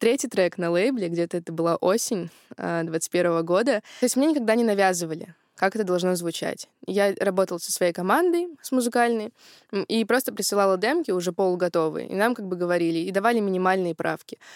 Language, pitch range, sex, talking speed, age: Russian, 185-230 Hz, female, 175 wpm, 20-39